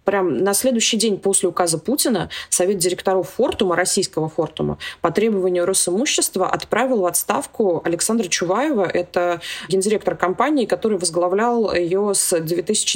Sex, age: female, 20-39